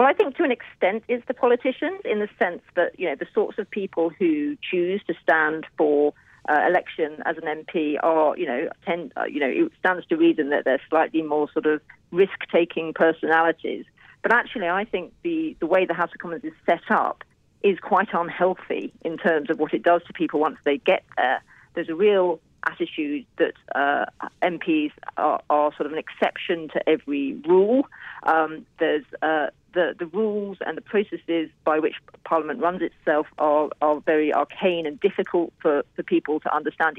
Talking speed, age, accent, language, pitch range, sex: 195 wpm, 40-59, British, English, 155-220 Hz, female